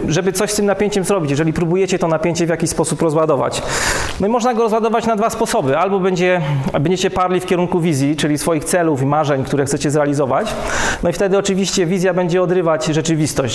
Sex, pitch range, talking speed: male, 150-185 Hz, 200 wpm